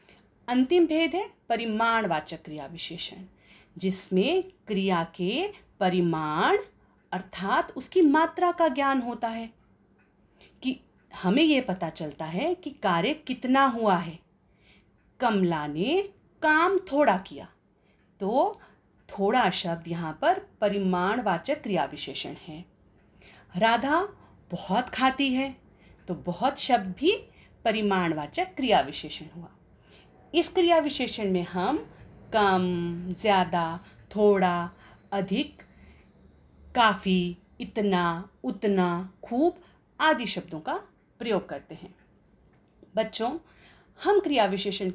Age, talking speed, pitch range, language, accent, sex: 40-59, 105 wpm, 175-275 Hz, Hindi, native, female